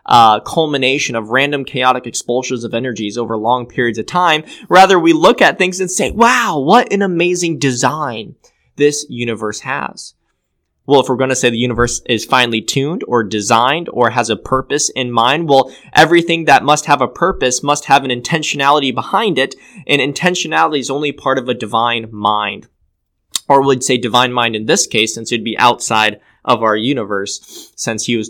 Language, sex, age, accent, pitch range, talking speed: English, male, 10-29, American, 115-145 Hz, 185 wpm